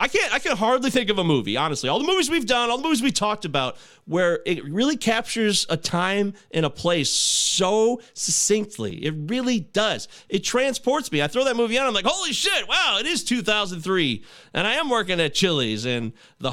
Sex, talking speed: male, 215 wpm